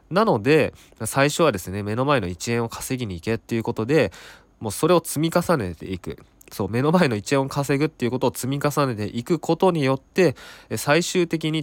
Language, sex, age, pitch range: Japanese, male, 20-39, 100-150 Hz